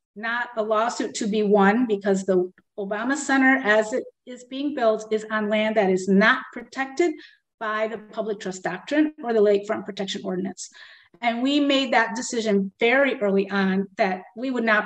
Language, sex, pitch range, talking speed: English, female, 205-255 Hz, 180 wpm